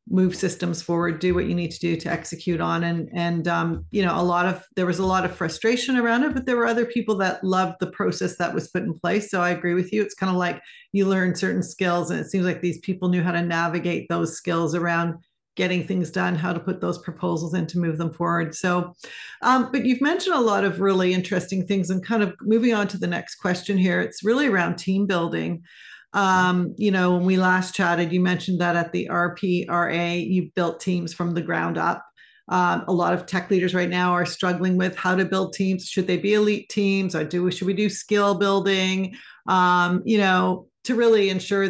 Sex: female